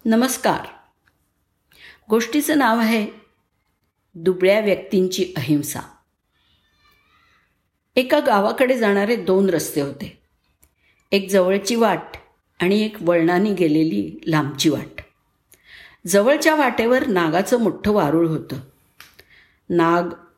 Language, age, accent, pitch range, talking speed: Marathi, 50-69, native, 160-210 Hz, 85 wpm